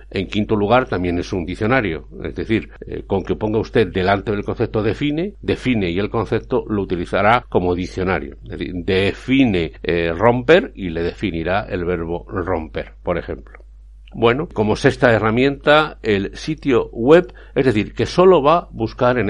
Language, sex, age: Spanish, male, 60-79